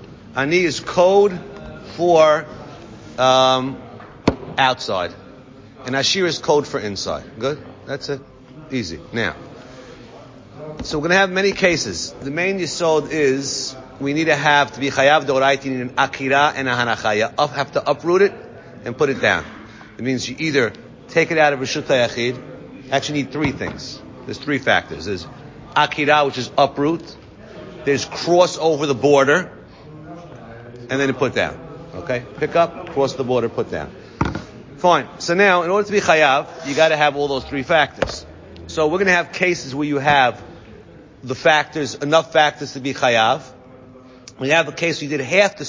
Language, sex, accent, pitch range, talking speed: English, male, American, 130-160 Hz, 170 wpm